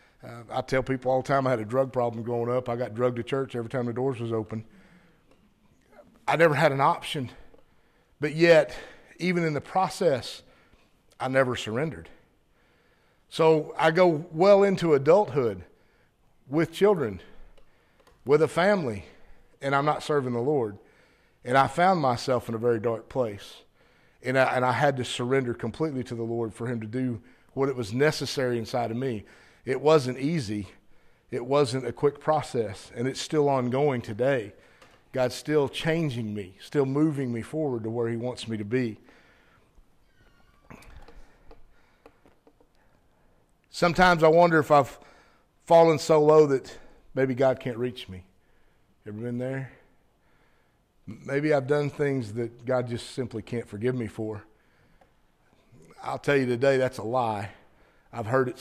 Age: 50-69